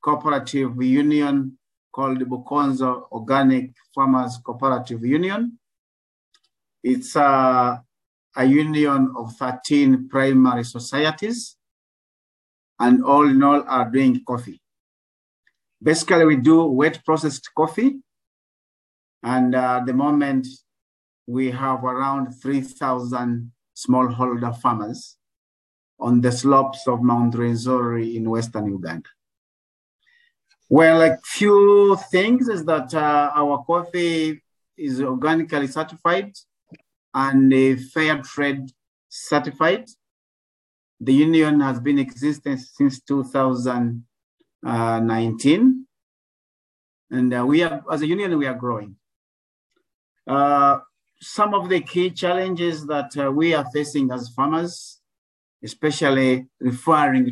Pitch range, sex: 125-155 Hz, male